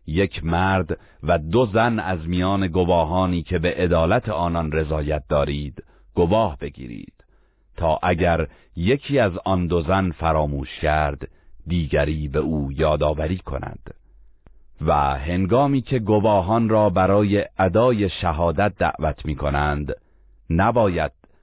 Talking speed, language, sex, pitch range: 120 wpm, Persian, male, 75-95 Hz